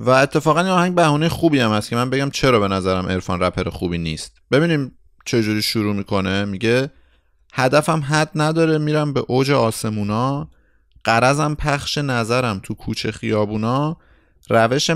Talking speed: 155 wpm